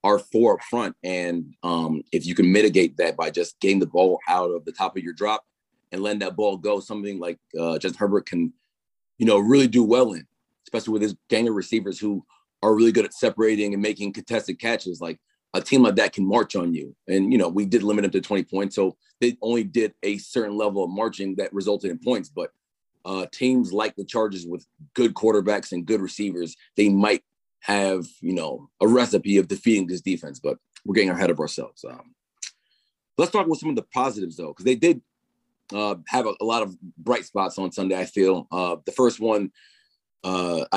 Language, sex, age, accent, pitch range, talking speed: English, male, 30-49, American, 95-115 Hz, 215 wpm